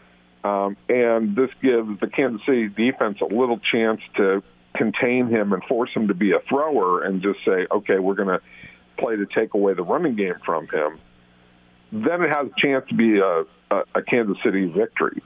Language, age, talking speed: English, 50-69, 190 wpm